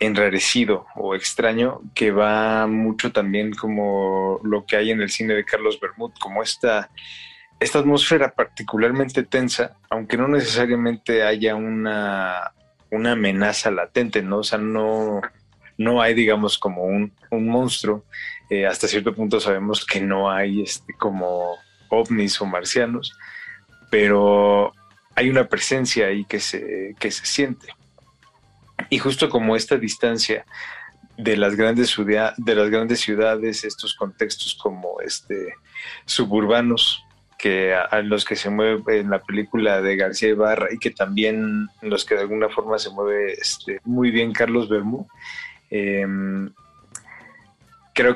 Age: 20-39